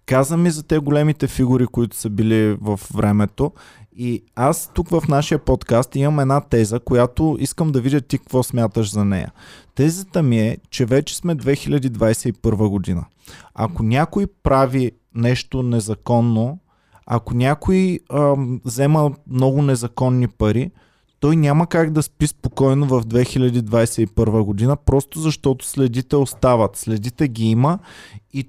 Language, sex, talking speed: Bulgarian, male, 140 wpm